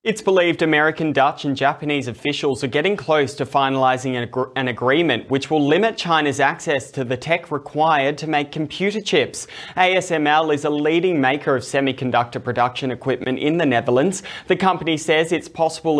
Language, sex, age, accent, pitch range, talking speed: English, male, 20-39, Australian, 130-160 Hz, 170 wpm